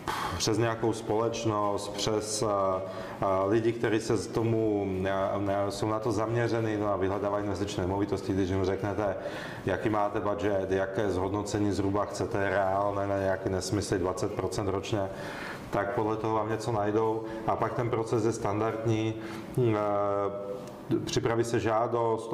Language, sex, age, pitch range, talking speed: Czech, male, 30-49, 100-115 Hz, 145 wpm